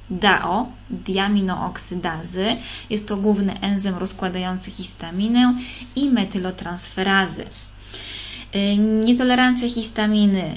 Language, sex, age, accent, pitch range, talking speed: Polish, female, 20-39, native, 185-215 Hz, 75 wpm